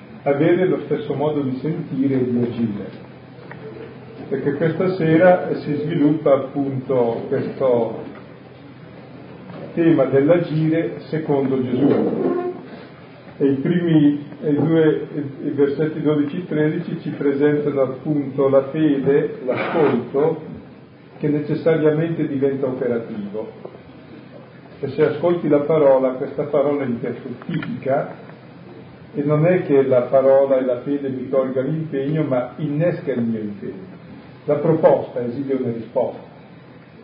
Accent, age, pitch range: native, 40-59, 135-155 Hz